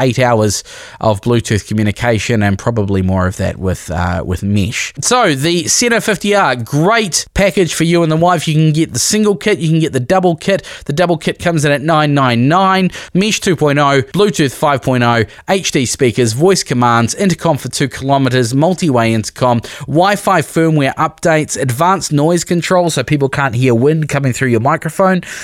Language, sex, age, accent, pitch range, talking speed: English, male, 20-39, Australian, 115-170 Hz, 170 wpm